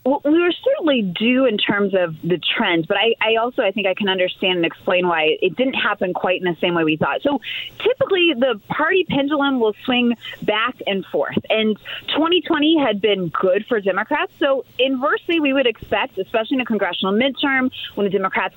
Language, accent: English, American